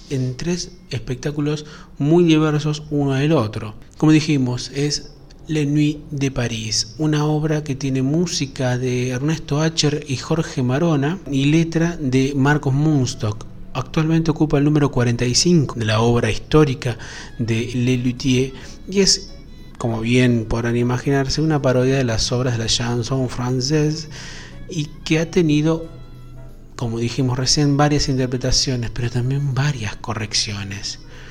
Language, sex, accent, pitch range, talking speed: Spanish, male, Argentinian, 120-150 Hz, 135 wpm